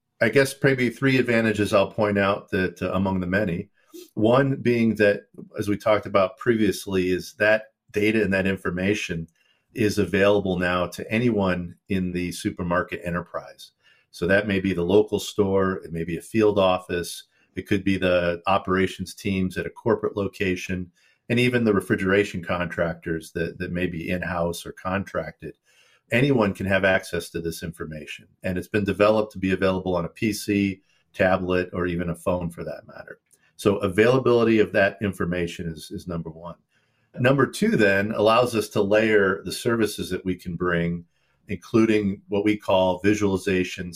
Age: 50-69